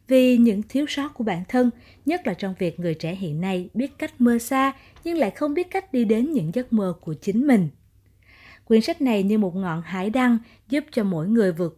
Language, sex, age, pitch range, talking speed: Vietnamese, female, 20-39, 185-260 Hz, 230 wpm